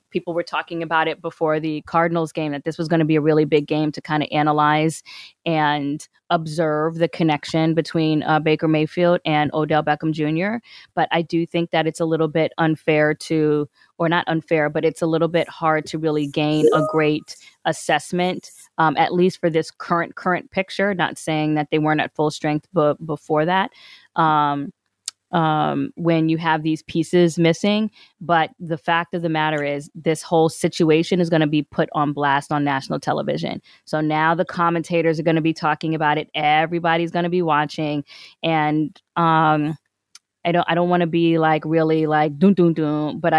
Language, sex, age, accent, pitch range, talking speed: English, female, 20-39, American, 150-165 Hz, 190 wpm